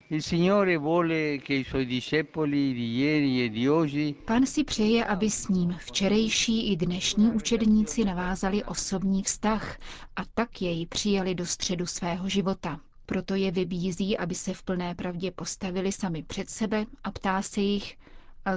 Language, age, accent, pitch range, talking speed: Czech, 50-69, native, 175-210 Hz, 125 wpm